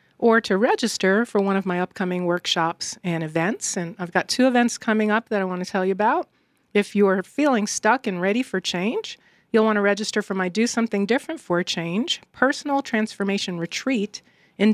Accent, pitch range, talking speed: American, 180-225 Hz, 195 wpm